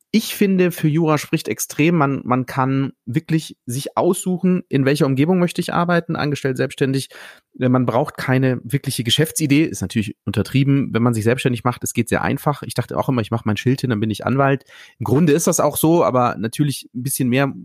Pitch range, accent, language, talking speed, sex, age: 130-160 Hz, German, German, 205 wpm, male, 30-49